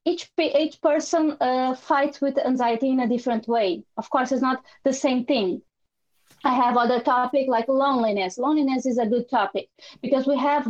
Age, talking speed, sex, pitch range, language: 20-39, 180 wpm, female, 240-285 Hz, English